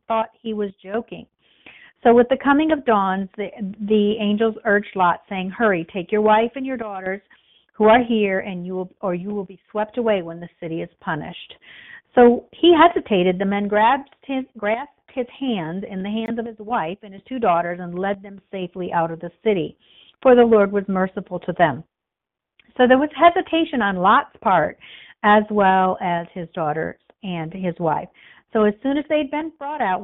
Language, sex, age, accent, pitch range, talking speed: English, female, 50-69, American, 185-230 Hz, 195 wpm